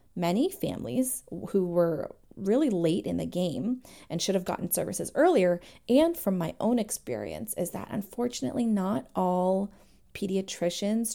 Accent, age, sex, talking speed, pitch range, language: American, 30-49, female, 140 wpm, 170-210 Hz, English